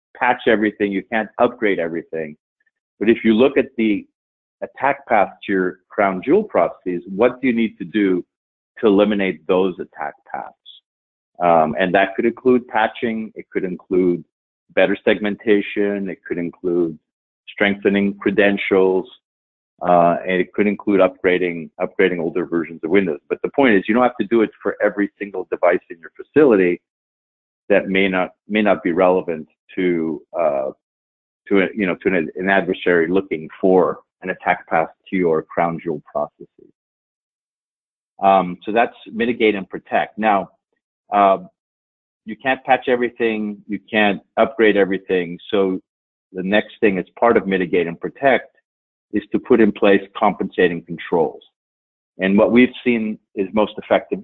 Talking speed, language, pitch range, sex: 155 wpm, English, 90-110 Hz, male